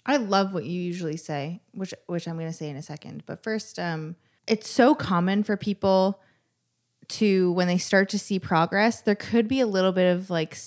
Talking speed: 215 wpm